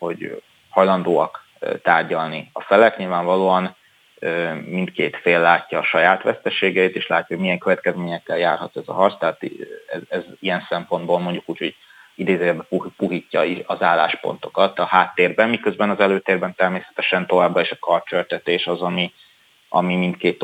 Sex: male